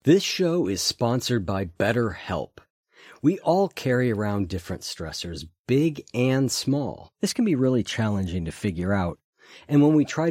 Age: 50-69